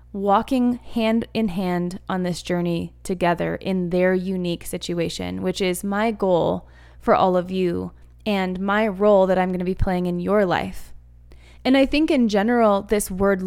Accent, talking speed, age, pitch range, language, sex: American, 175 wpm, 20-39, 180-220 Hz, English, female